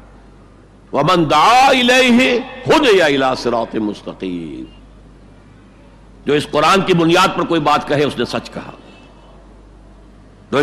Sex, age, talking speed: male, 60-79, 90 wpm